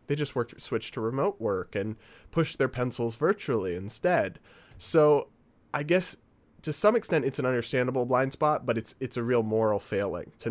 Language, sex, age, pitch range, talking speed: English, male, 20-39, 110-135 Hz, 185 wpm